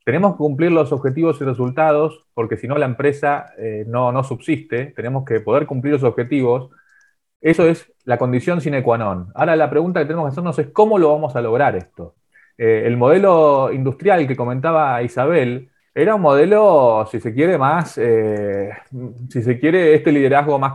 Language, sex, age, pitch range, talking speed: Spanish, male, 20-39, 120-155 Hz, 185 wpm